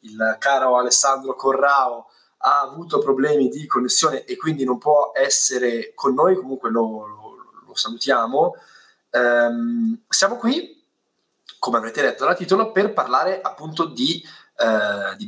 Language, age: Italian, 20-39